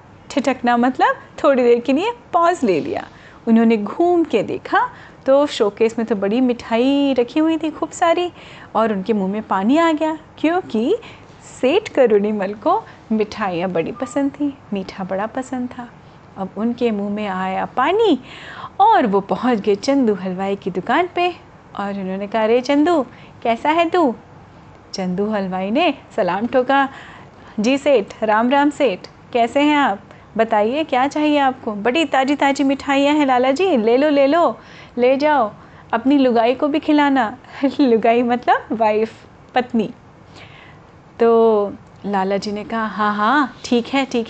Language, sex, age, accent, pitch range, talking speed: Hindi, female, 30-49, native, 210-285 Hz, 155 wpm